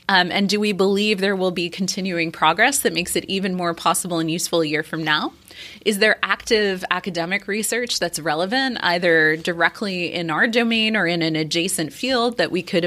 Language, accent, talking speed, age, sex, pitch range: English, American, 195 wpm, 20-39, female, 165-210 Hz